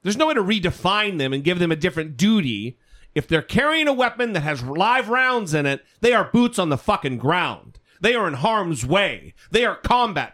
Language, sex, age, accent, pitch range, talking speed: English, male, 40-59, American, 155-235 Hz, 220 wpm